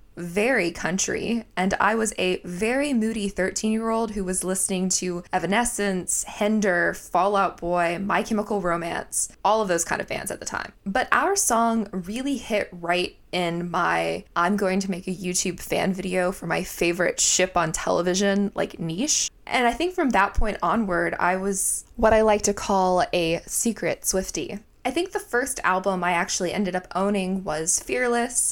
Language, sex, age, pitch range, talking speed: English, female, 20-39, 175-210 Hz, 145 wpm